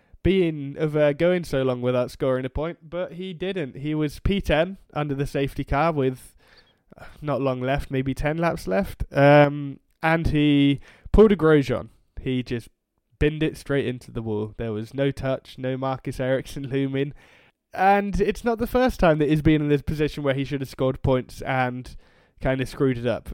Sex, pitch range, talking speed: male, 130-160 Hz, 190 wpm